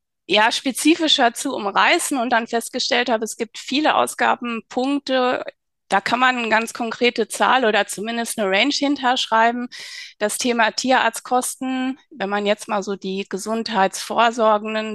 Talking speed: 135 wpm